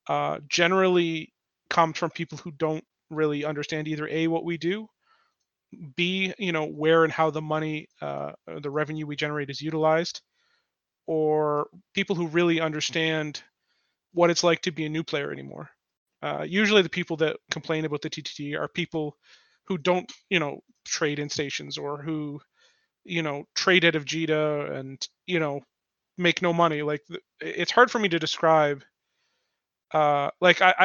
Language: English